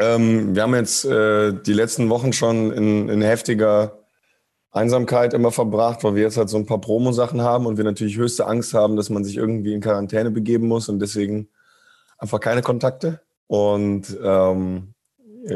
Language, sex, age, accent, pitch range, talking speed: German, male, 20-39, German, 100-115 Hz, 175 wpm